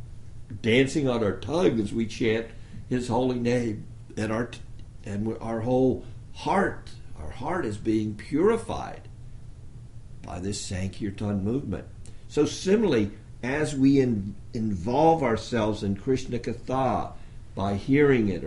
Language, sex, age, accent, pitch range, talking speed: English, male, 60-79, American, 110-135 Hz, 125 wpm